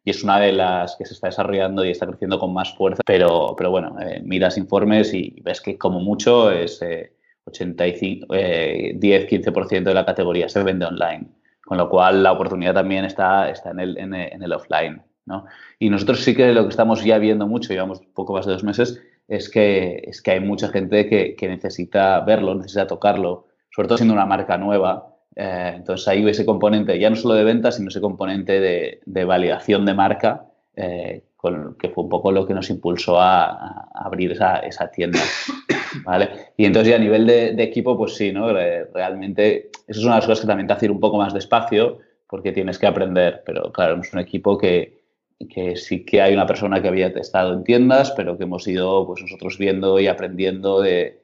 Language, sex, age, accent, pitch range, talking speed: Spanish, male, 20-39, Spanish, 95-110 Hz, 205 wpm